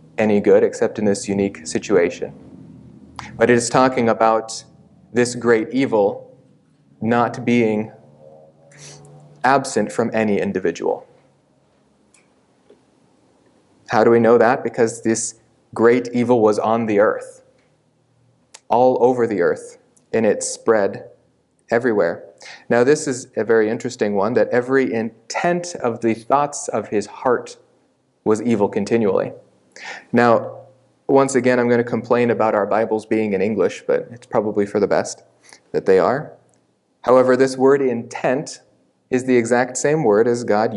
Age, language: 30-49, English